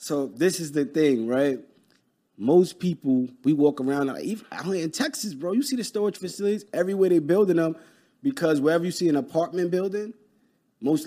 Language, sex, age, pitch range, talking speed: English, male, 30-49, 115-150 Hz, 175 wpm